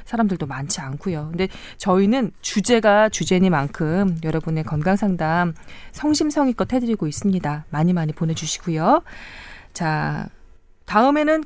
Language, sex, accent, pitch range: Korean, female, native, 165-250 Hz